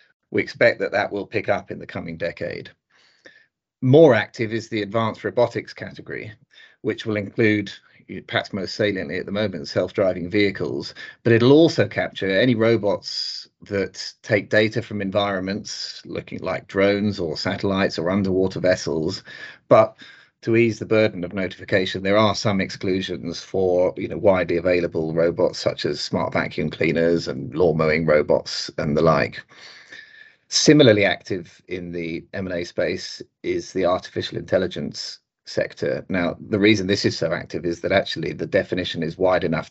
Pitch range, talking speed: 95-115 Hz, 155 wpm